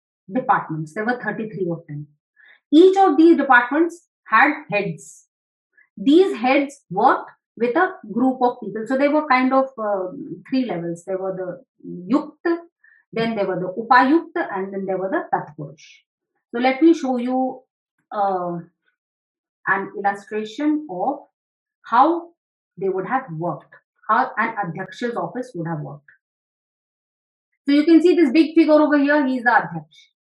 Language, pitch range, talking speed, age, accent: English, 195-295 Hz, 150 wpm, 30-49, Indian